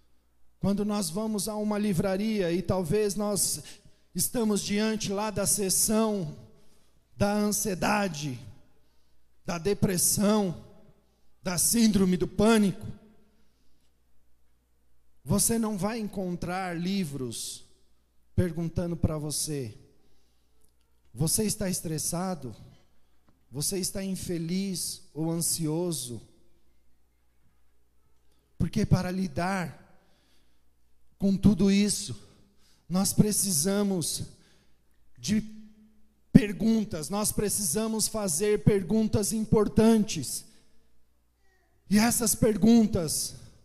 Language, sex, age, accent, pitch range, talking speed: Portuguese, male, 40-59, Brazilian, 140-215 Hz, 75 wpm